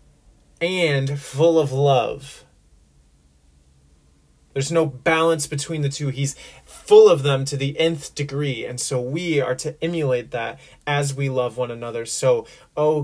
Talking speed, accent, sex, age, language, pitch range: 145 wpm, American, male, 30-49, English, 130-150 Hz